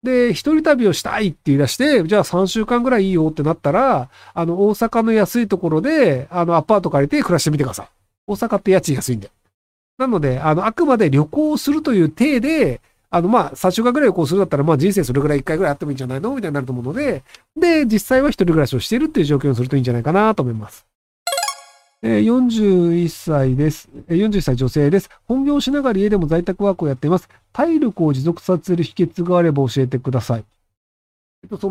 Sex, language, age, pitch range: male, Japanese, 50-69, 140-230 Hz